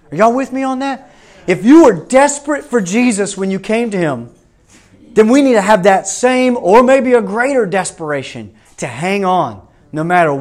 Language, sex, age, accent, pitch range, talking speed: English, male, 30-49, American, 135-205 Hz, 195 wpm